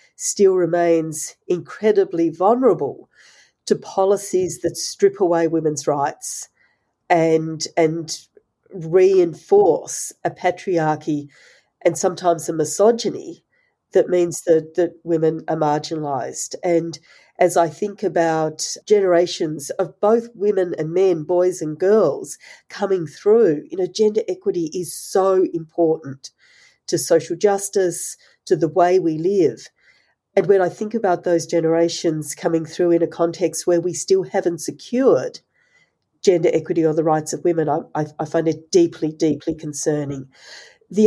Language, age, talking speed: English, 40-59, 130 wpm